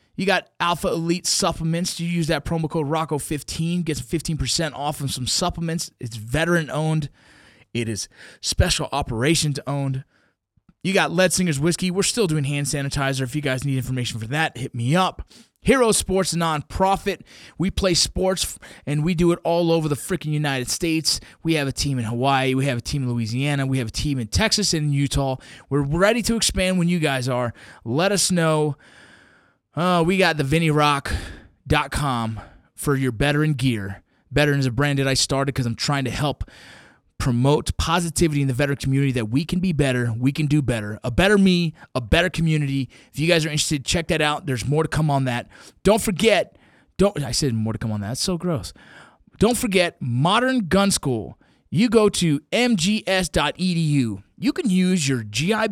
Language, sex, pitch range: English, male, 130-175 Hz